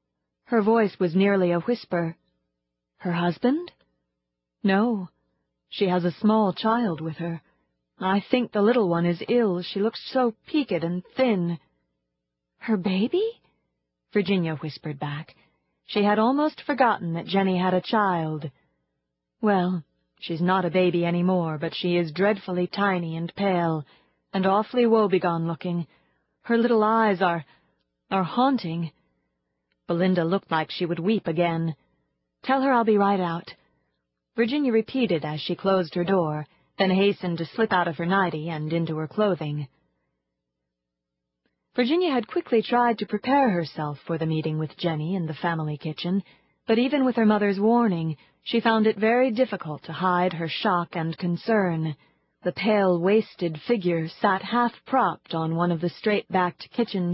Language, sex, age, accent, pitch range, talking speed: English, female, 30-49, American, 155-210 Hz, 150 wpm